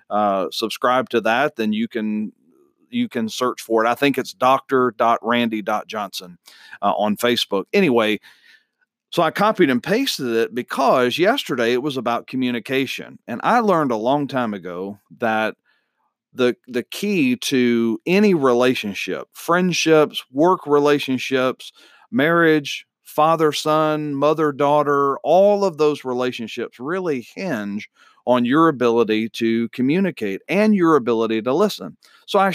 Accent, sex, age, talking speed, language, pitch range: American, male, 40-59, 130 wpm, English, 115-165 Hz